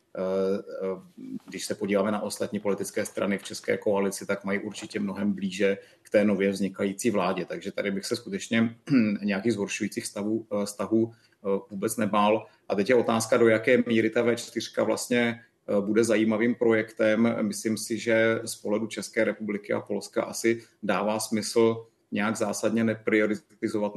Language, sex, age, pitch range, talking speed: Czech, male, 30-49, 100-110 Hz, 145 wpm